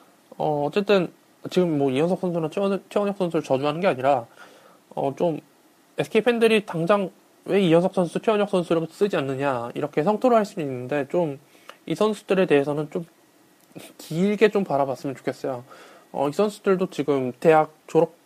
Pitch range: 150-205 Hz